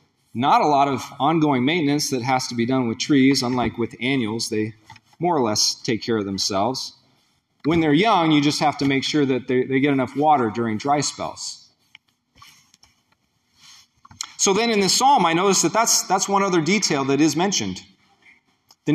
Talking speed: 185 wpm